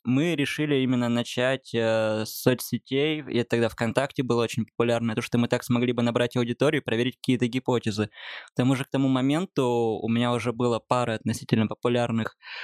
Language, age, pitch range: Russian, 20-39, 115-125 Hz